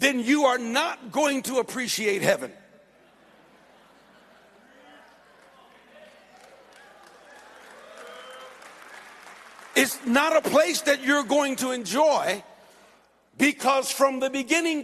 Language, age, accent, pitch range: English, 60-79, American, 245-315 Hz